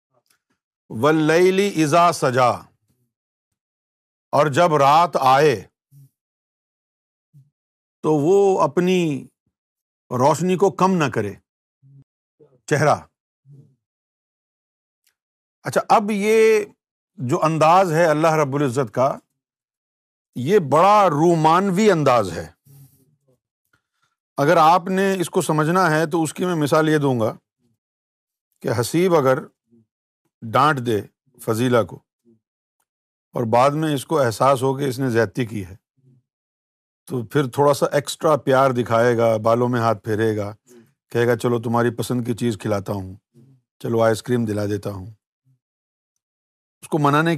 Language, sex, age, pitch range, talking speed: Urdu, male, 50-69, 115-155 Hz, 125 wpm